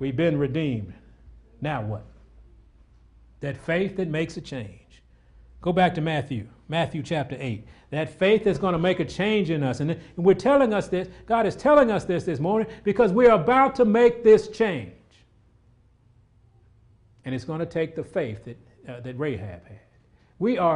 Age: 40-59